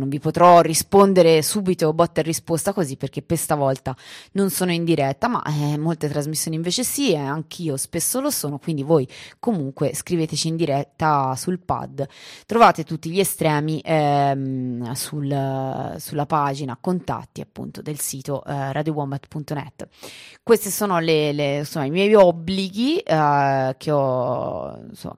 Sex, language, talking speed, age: female, Italian, 150 wpm, 20-39